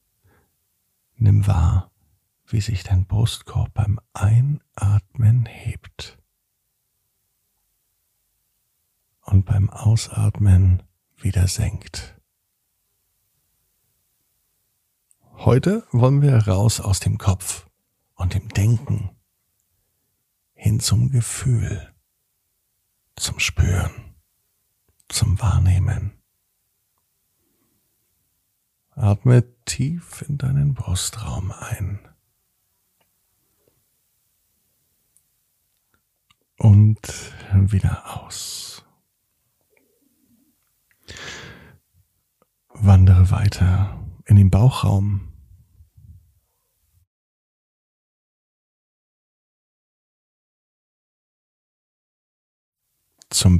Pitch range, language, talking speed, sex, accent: 95-110 Hz, German, 50 wpm, male, German